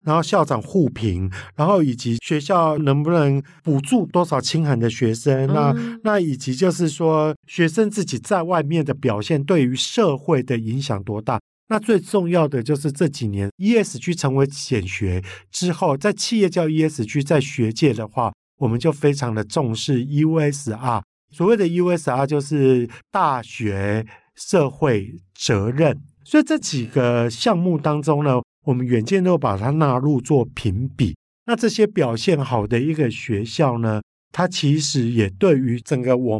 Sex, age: male, 50-69